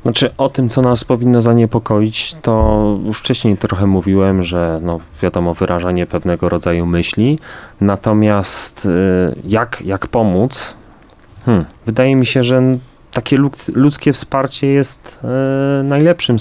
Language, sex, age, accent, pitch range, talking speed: Polish, male, 30-49, native, 95-125 Hz, 115 wpm